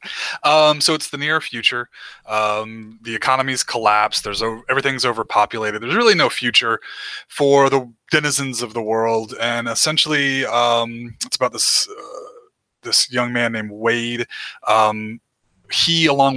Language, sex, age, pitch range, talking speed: English, male, 20-39, 115-140 Hz, 140 wpm